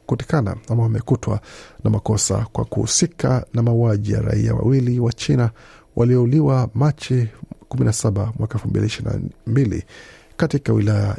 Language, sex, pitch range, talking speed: Swahili, male, 110-130 Hz, 115 wpm